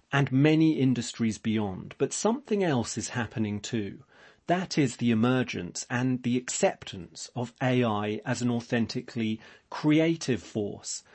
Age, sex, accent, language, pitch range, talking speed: 40-59, male, British, English, 110-135 Hz, 130 wpm